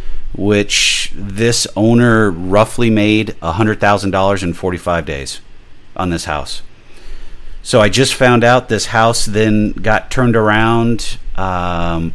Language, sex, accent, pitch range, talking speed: English, male, American, 85-110 Hz, 120 wpm